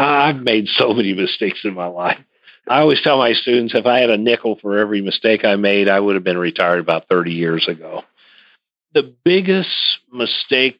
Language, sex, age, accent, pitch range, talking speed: English, male, 50-69, American, 90-110 Hz, 195 wpm